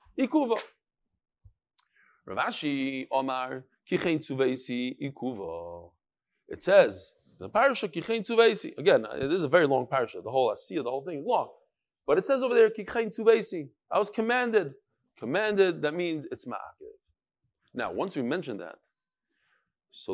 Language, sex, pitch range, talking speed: English, male, 150-245 Hz, 135 wpm